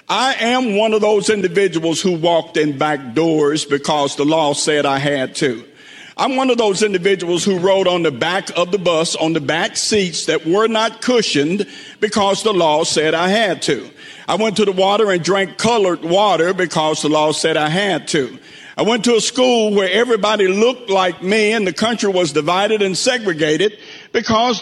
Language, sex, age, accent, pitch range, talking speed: English, male, 50-69, American, 185-235 Hz, 195 wpm